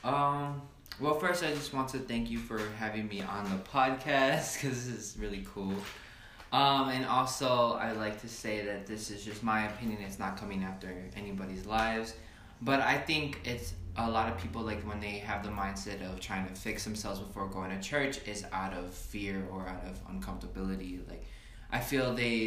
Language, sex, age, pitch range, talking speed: English, male, 20-39, 95-115 Hz, 200 wpm